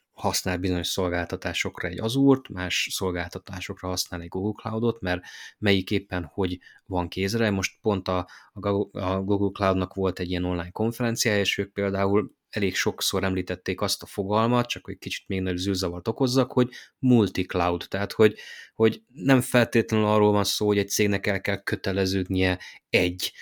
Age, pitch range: 20-39, 95-115 Hz